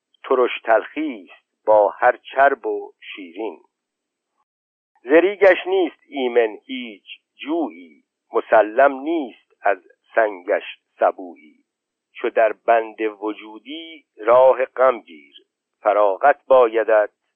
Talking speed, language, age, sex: 90 wpm, Persian, 60-79, male